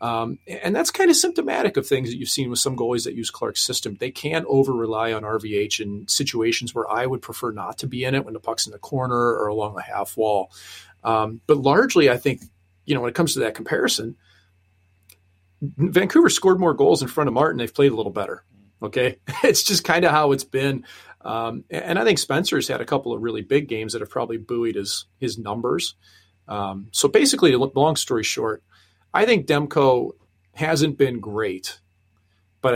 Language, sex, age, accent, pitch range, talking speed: English, male, 40-59, American, 105-135 Hz, 205 wpm